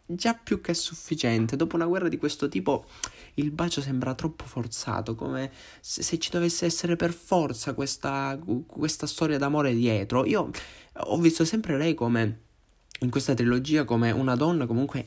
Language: Italian